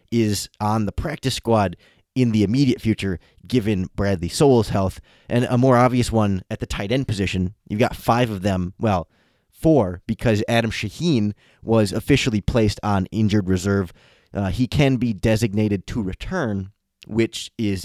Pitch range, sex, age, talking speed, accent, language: 100-120 Hz, male, 20-39, 160 wpm, American, English